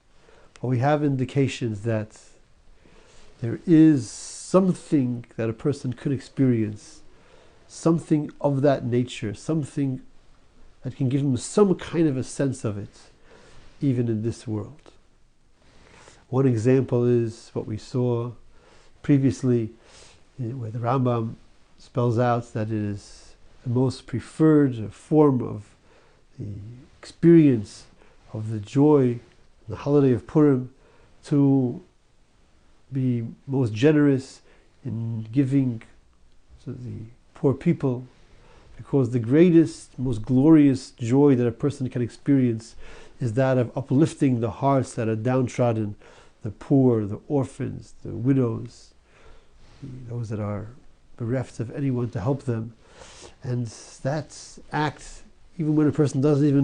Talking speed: 125 wpm